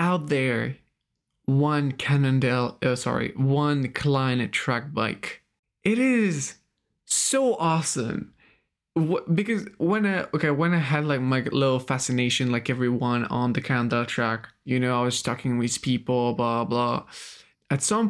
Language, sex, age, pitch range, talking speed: English, male, 20-39, 125-150 Hz, 140 wpm